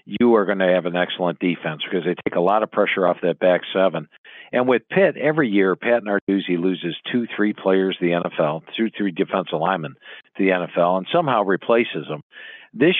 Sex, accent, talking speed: male, American, 210 wpm